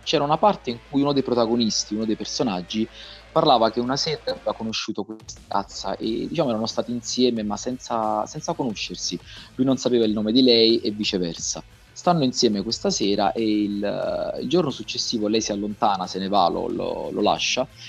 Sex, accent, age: male, native, 30-49